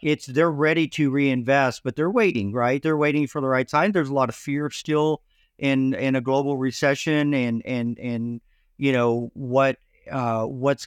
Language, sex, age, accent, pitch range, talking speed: English, male, 50-69, American, 130-145 Hz, 190 wpm